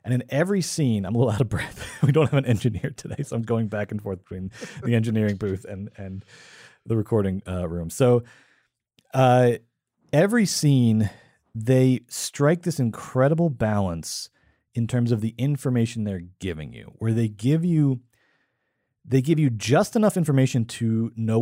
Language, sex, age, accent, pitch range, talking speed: English, male, 30-49, American, 110-145 Hz, 170 wpm